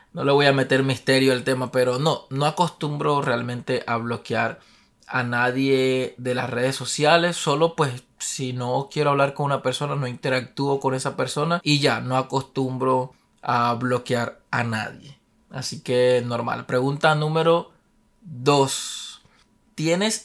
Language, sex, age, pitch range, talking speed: Spanish, male, 20-39, 125-150 Hz, 150 wpm